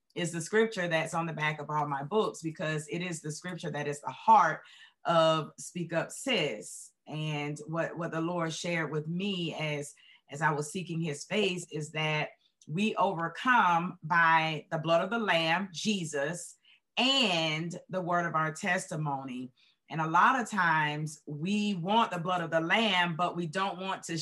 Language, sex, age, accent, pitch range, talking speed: English, female, 30-49, American, 160-210 Hz, 180 wpm